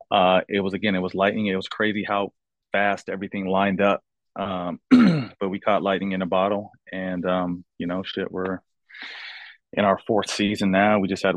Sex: male